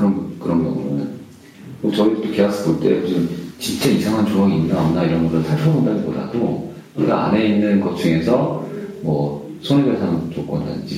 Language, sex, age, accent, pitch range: Korean, male, 40-59, native, 85-115 Hz